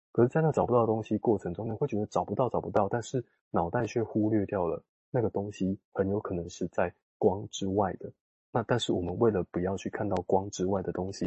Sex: male